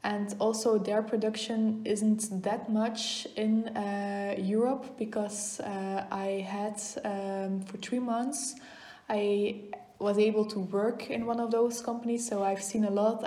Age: 20-39